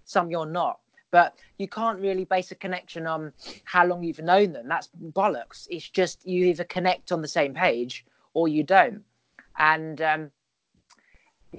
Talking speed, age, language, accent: 165 wpm, 20-39, English, British